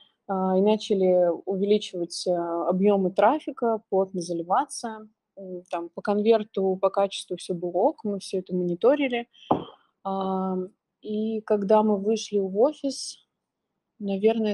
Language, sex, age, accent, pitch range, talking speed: Russian, female, 20-39, native, 185-220 Hz, 105 wpm